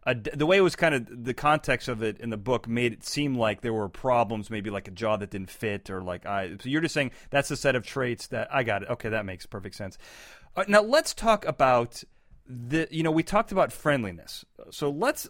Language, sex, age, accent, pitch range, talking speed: English, male, 40-59, American, 120-180 Hz, 245 wpm